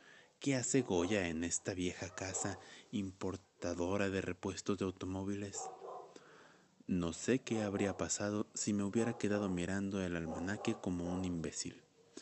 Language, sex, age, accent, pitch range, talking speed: Spanish, male, 30-49, Mexican, 85-100 Hz, 135 wpm